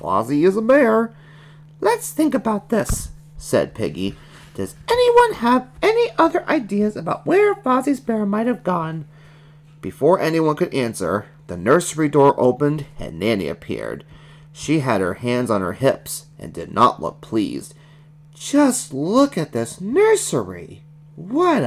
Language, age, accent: English, 30-49, American